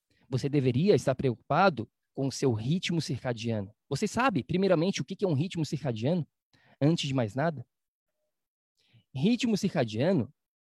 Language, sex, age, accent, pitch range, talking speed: Portuguese, male, 20-39, Brazilian, 130-180 Hz, 135 wpm